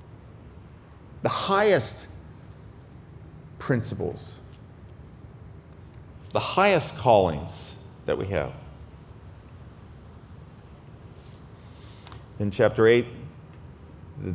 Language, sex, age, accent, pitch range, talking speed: English, male, 40-59, American, 100-125 Hz, 55 wpm